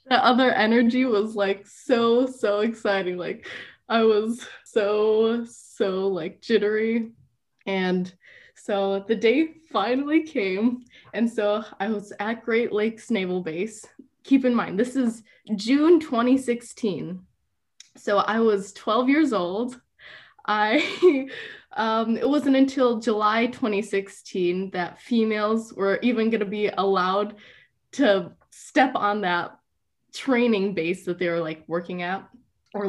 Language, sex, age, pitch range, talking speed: English, female, 10-29, 195-250 Hz, 130 wpm